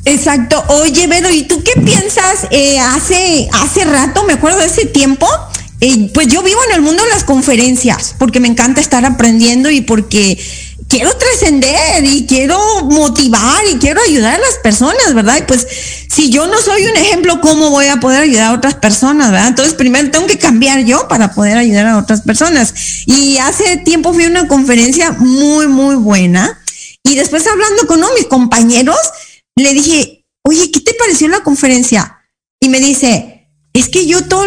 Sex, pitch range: female, 240-335 Hz